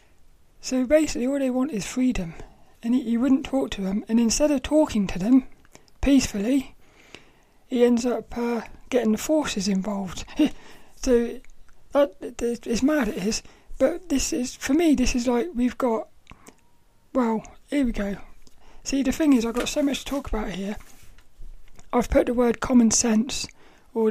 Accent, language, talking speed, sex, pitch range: British, English, 165 wpm, male, 225-270 Hz